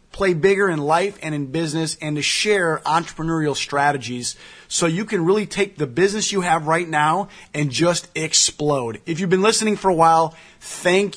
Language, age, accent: English, 30-49, American